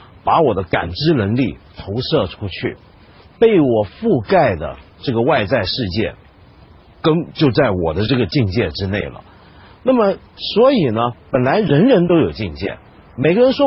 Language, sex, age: Chinese, male, 50-69